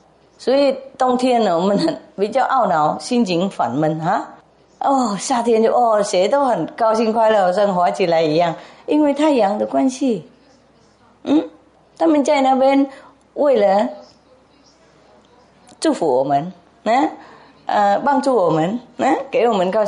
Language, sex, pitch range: English, female, 180-260 Hz